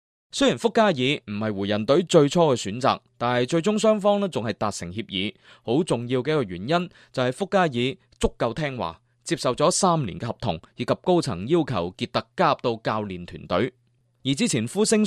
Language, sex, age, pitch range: Chinese, male, 20-39, 120-175 Hz